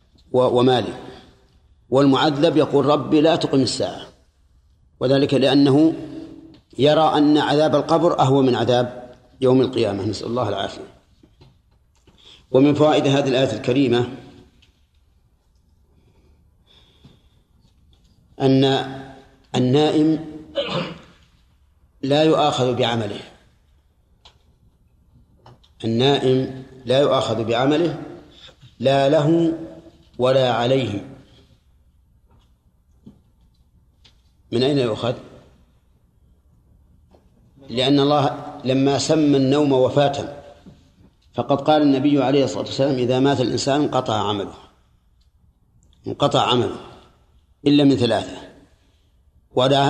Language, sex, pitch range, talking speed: Arabic, male, 110-140 Hz, 80 wpm